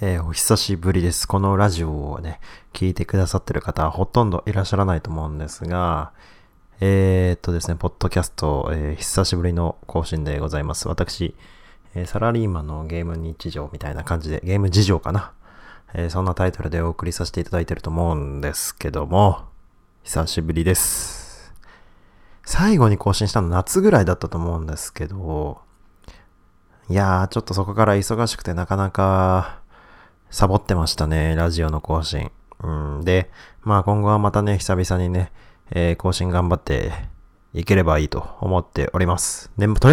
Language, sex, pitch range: Japanese, male, 80-100 Hz